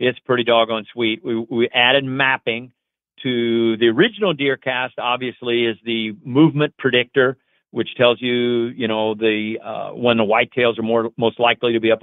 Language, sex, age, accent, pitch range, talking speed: English, male, 50-69, American, 115-135 Hz, 175 wpm